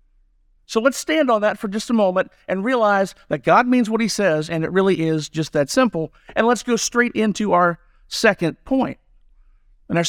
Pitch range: 160-215 Hz